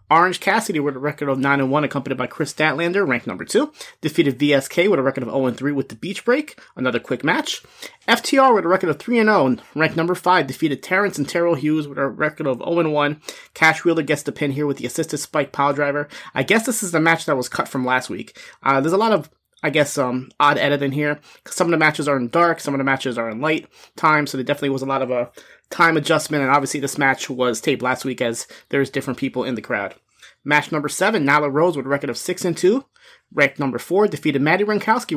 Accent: American